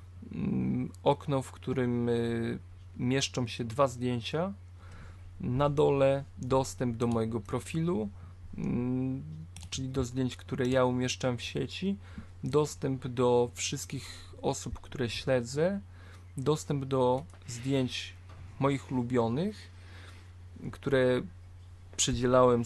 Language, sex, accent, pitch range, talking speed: Polish, male, native, 90-130 Hz, 90 wpm